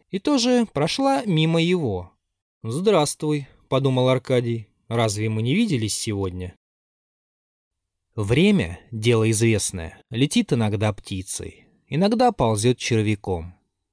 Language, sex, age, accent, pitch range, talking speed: Russian, male, 20-39, native, 100-150 Hz, 110 wpm